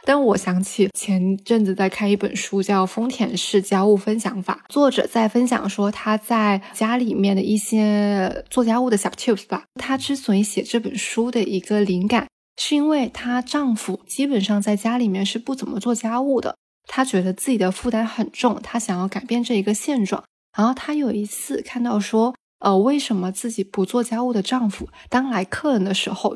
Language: Chinese